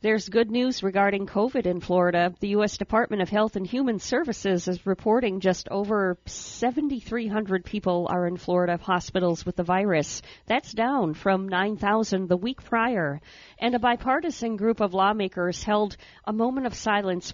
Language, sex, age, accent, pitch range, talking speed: English, female, 50-69, American, 180-215 Hz, 160 wpm